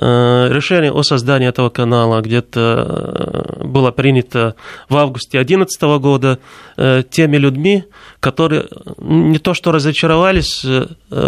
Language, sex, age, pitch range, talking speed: Russian, male, 30-49, 130-155 Hz, 100 wpm